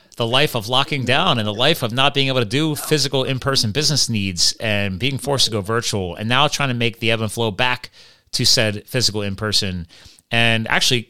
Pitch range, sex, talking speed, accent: 105-150 Hz, male, 215 wpm, American